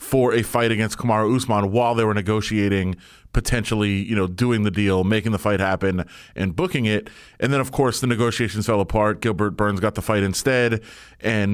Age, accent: 30-49, American